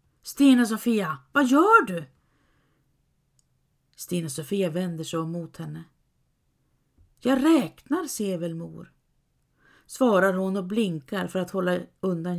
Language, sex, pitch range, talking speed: Swedish, female, 170-260 Hz, 120 wpm